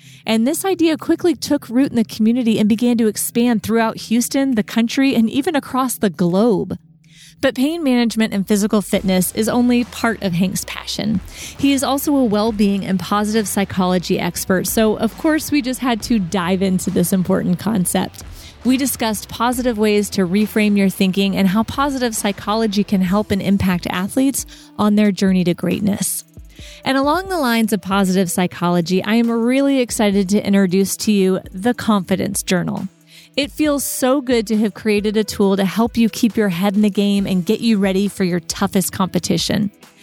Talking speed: 180 wpm